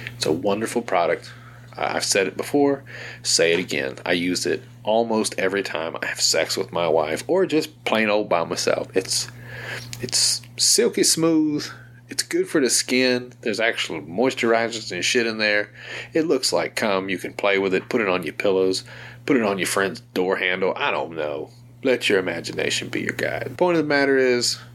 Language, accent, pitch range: English, American, 115-135 Hz